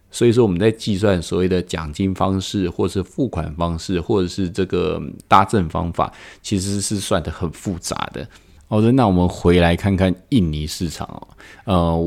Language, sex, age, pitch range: Chinese, male, 20-39, 85-110 Hz